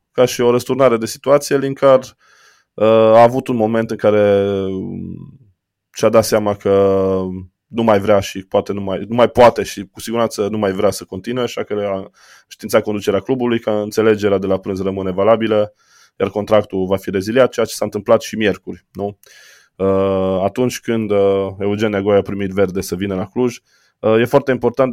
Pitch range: 95-115 Hz